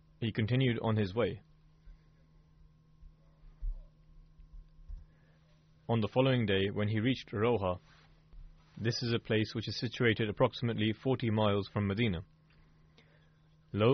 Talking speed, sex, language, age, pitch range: 110 wpm, male, English, 30-49, 80-125 Hz